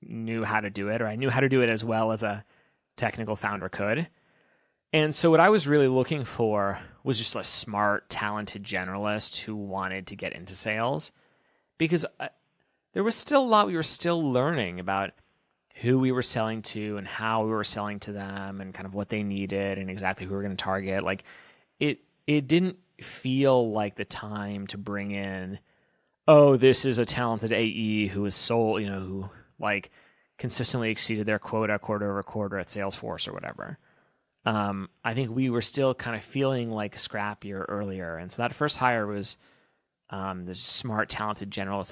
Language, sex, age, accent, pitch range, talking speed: English, male, 30-49, American, 100-120 Hz, 195 wpm